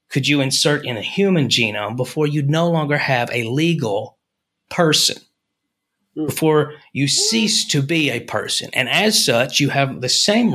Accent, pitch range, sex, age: American, 125-180 Hz, male, 30-49